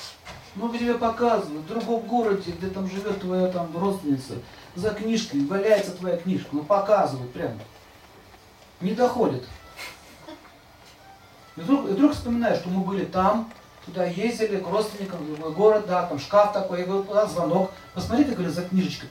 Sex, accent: male, native